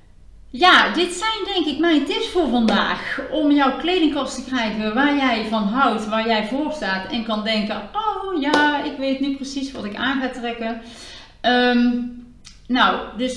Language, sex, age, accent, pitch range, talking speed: Dutch, female, 40-59, Dutch, 200-265 Hz, 170 wpm